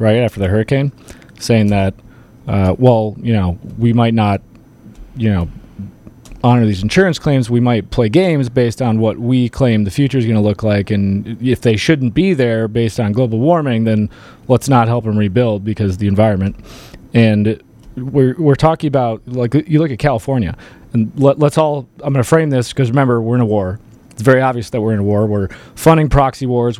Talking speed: 205 wpm